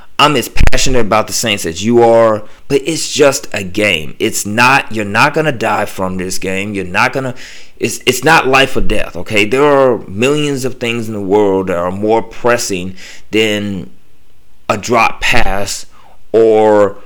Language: English